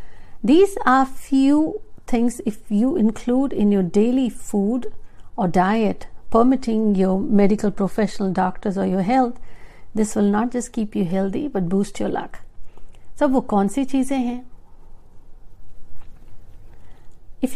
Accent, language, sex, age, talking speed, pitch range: native, Hindi, female, 60-79, 135 wpm, 200-250 Hz